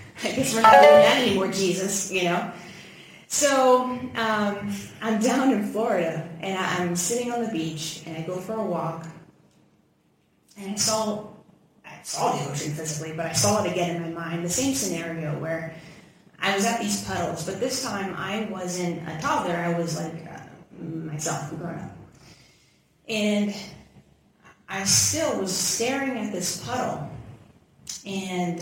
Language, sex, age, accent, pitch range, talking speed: English, female, 30-49, American, 160-200 Hz, 160 wpm